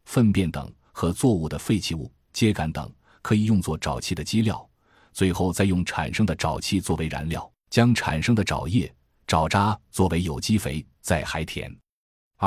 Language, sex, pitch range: Chinese, male, 80-110 Hz